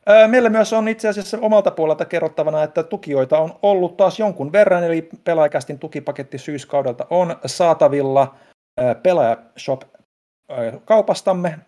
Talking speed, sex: 115 wpm, male